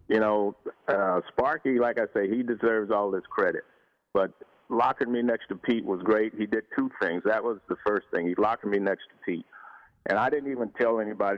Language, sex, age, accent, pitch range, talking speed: English, male, 50-69, American, 100-120 Hz, 215 wpm